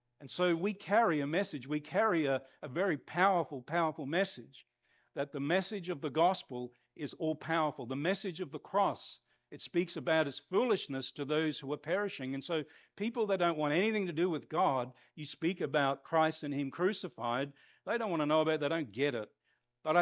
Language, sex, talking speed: English, male, 200 wpm